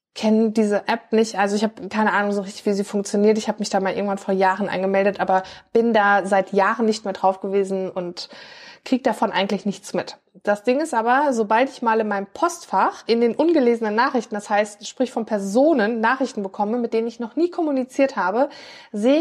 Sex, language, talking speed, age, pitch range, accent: female, German, 210 wpm, 20-39, 205-260 Hz, German